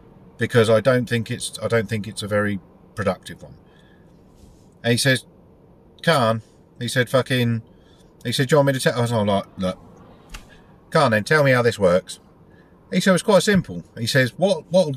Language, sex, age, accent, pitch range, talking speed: English, male, 50-69, British, 105-135 Hz, 200 wpm